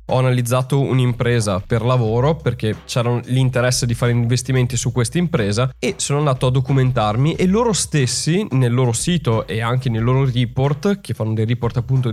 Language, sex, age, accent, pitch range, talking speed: Italian, male, 20-39, native, 125-155 Hz, 175 wpm